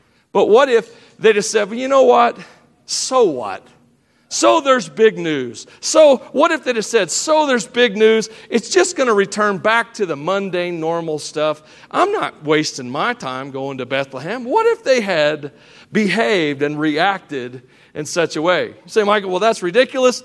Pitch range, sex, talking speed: 160-230 Hz, male, 185 wpm